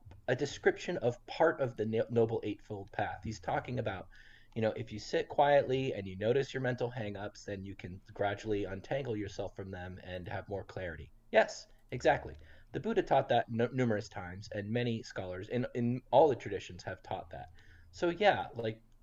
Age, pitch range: 30-49, 100-125 Hz